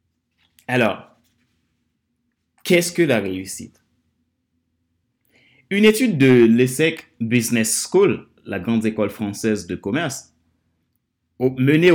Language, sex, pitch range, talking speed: French, male, 90-120 Hz, 90 wpm